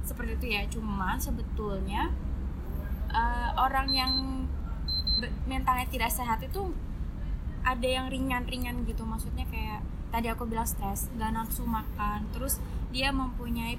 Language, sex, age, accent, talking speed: Indonesian, female, 20-39, native, 125 wpm